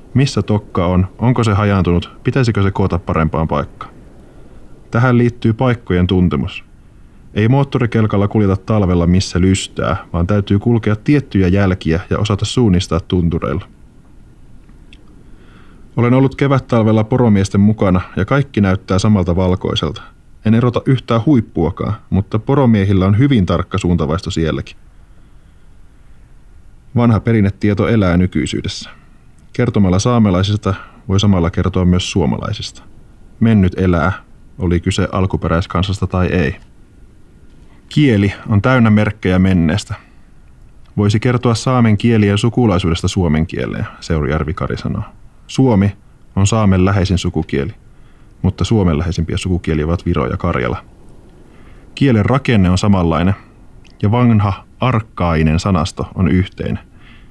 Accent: native